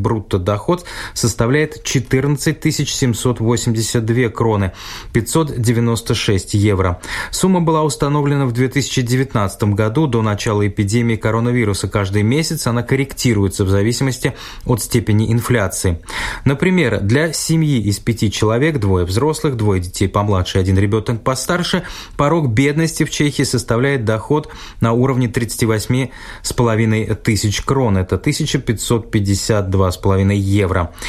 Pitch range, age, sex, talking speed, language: 105-135 Hz, 20-39, male, 115 wpm, Russian